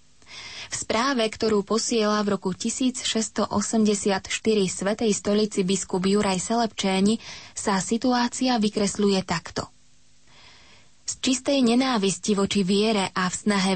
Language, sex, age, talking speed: Slovak, female, 20-39, 105 wpm